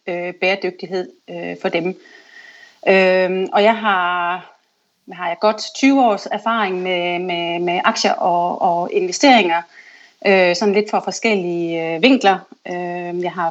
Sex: female